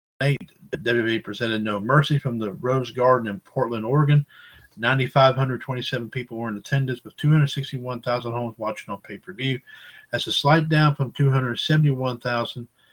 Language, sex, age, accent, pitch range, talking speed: English, male, 50-69, American, 115-140 Hz, 135 wpm